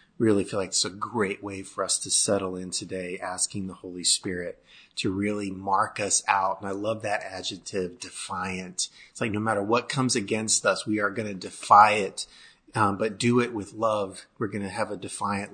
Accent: American